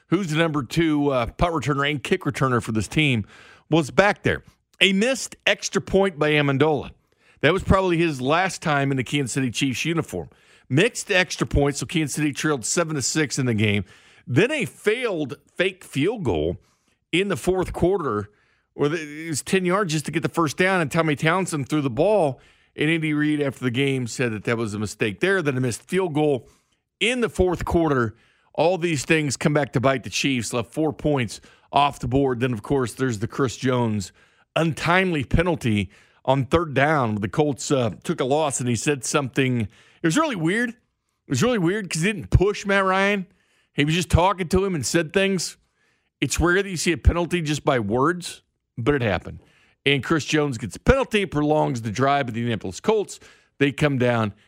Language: English